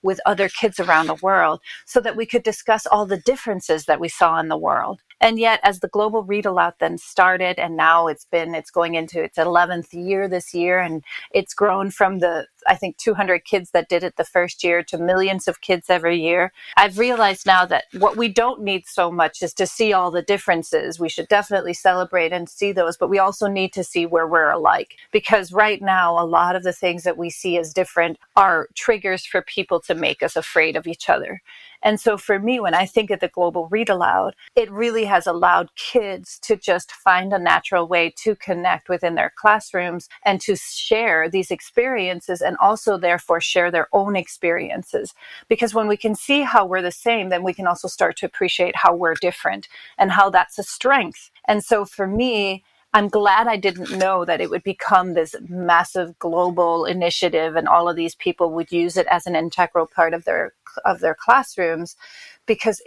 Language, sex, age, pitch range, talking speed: English, female, 30-49, 175-210 Hz, 205 wpm